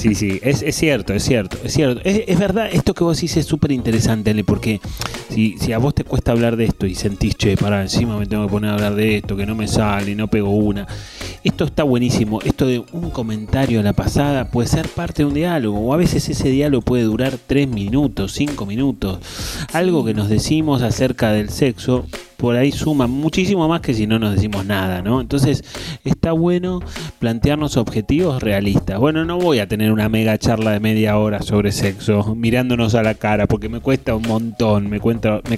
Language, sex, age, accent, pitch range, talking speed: Spanish, male, 30-49, Argentinian, 105-140 Hz, 210 wpm